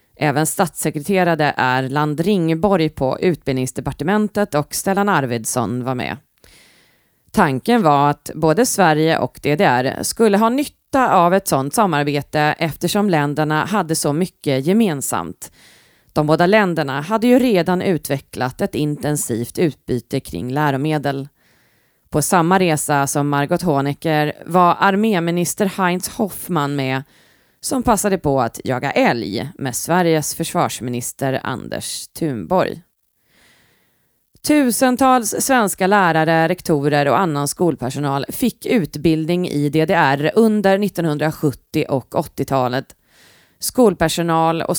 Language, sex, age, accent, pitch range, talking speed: Swedish, female, 30-49, native, 145-195 Hz, 110 wpm